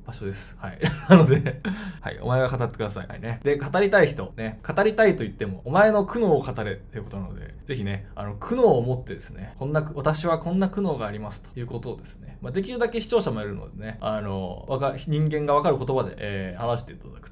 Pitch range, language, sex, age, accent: 105-150 Hz, Japanese, male, 20-39, native